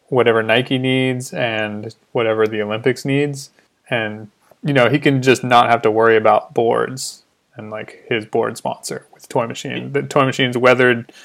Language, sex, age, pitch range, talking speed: English, male, 20-39, 115-135 Hz, 170 wpm